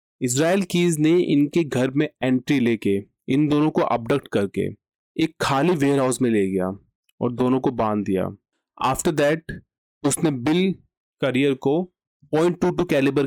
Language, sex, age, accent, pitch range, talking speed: Hindi, male, 30-49, native, 120-160 Hz, 145 wpm